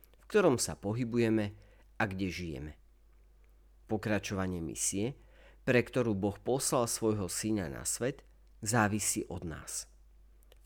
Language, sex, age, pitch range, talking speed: Slovak, male, 40-59, 90-125 Hz, 120 wpm